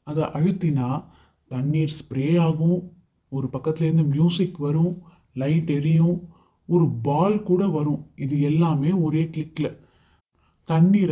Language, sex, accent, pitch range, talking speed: Tamil, male, native, 135-165 Hz, 110 wpm